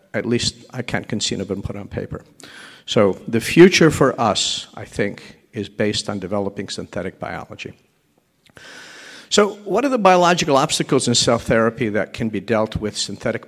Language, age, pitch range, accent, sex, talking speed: English, 50-69, 105-140 Hz, American, male, 170 wpm